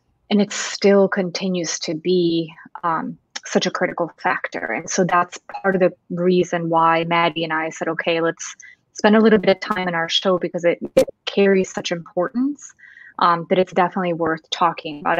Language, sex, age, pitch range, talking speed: English, female, 20-39, 170-200 Hz, 185 wpm